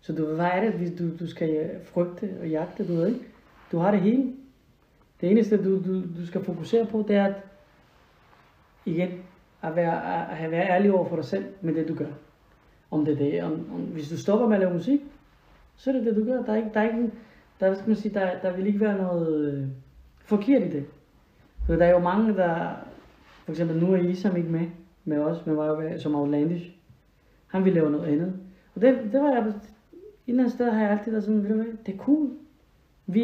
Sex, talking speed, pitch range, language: female, 225 wpm, 160-210 Hz, Danish